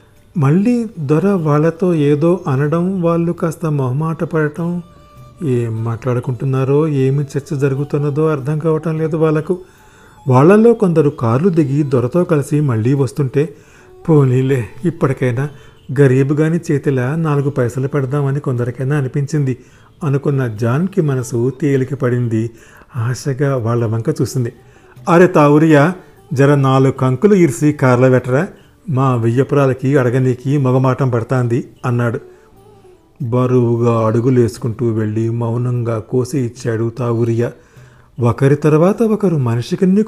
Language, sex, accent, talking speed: Telugu, male, native, 100 wpm